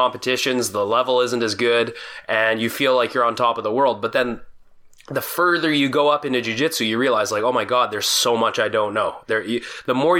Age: 20-39